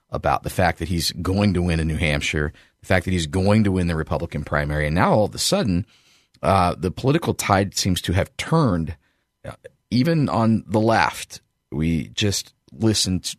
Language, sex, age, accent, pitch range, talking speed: English, male, 40-59, American, 85-110 Hz, 190 wpm